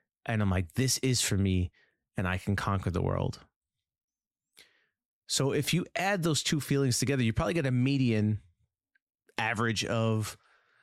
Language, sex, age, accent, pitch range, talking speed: English, male, 30-49, American, 105-140 Hz, 155 wpm